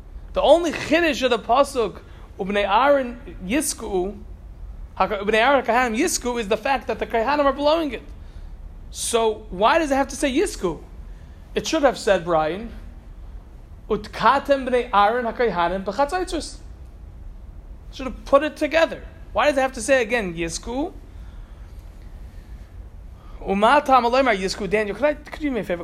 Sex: male